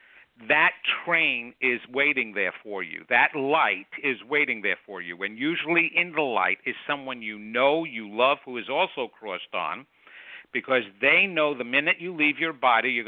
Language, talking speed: English, 185 wpm